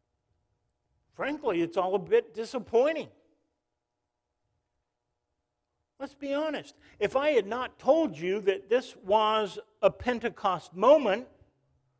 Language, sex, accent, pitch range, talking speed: English, male, American, 185-310 Hz, 105 wpm